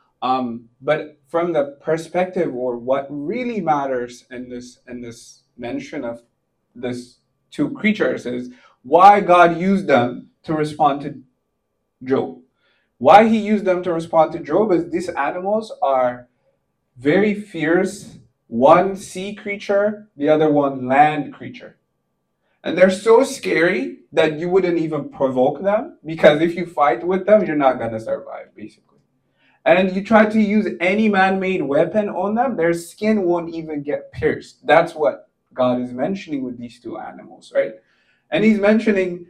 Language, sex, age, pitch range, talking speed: English, male, 20-39, 140-200 Hz, 150 wpm